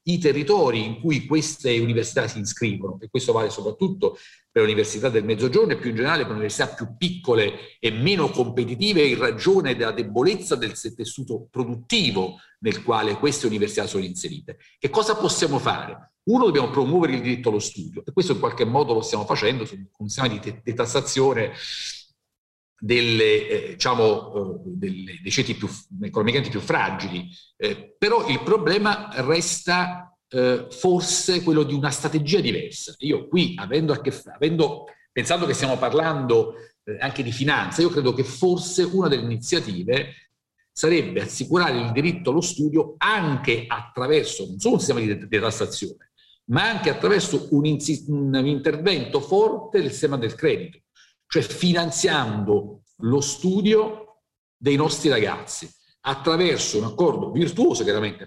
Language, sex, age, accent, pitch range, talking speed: Italian, male, 50-69, native, 125-190 Hz, 155 wpm